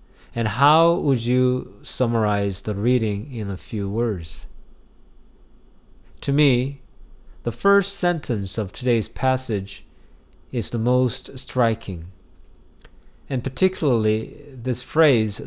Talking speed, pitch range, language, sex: 105 wpm, 90-125 Hz, English, male